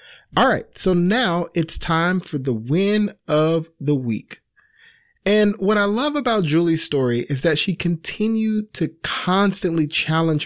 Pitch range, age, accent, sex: 140-190 Hz, 30-49, American, male